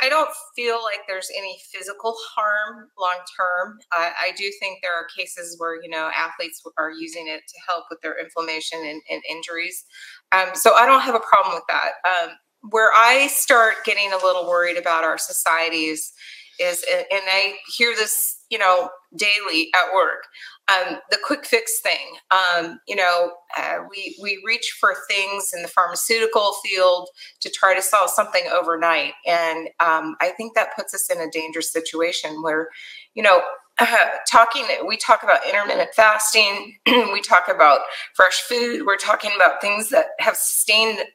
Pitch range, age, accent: 175-230 Hz, 30-49, American